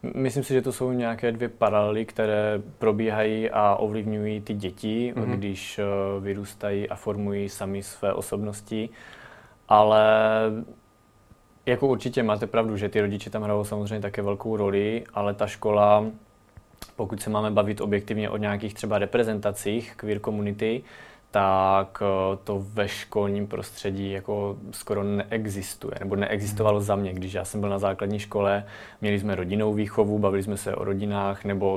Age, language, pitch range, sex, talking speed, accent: 20-39, Czech, 100-110 Hz, male, 150 wpm, native